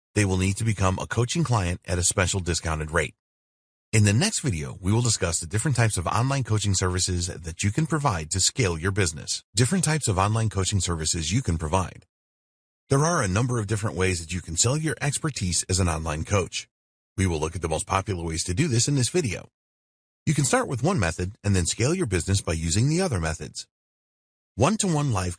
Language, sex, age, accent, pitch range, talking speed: English, male, 30-49, American, 85-115 Hz, 220 wpm